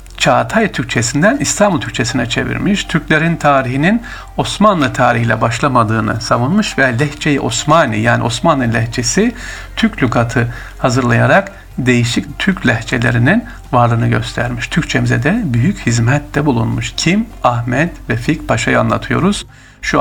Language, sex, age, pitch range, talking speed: Turkish, male, 60-79, 120-155 Hz, 110 wpm